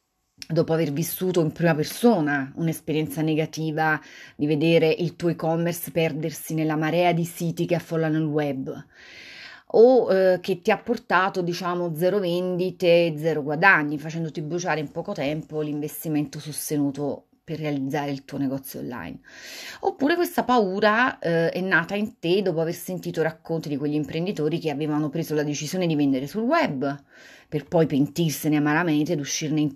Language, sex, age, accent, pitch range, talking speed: Italian, female, 30-49, native, 150-185 Hz, 155 wpm